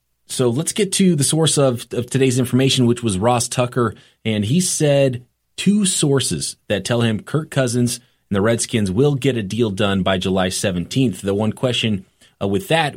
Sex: male